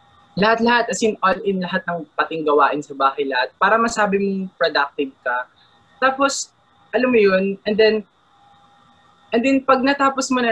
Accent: native